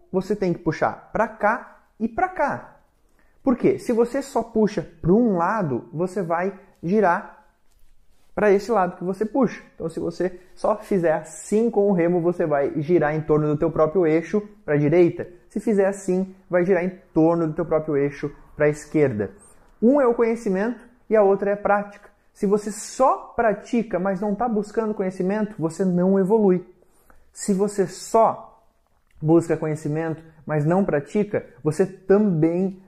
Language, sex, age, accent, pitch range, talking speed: Portuguese, male, 20-39, Brazilian, 165-215 Hz, 170 wpm